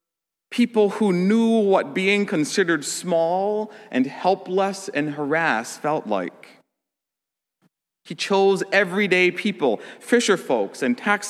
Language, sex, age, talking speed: English, male, 40-59, 110 wpm